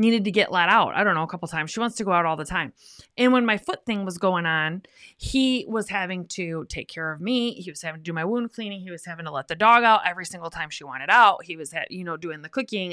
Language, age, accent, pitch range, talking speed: English, 20-39, American, 175-230 Hz, 300 wpm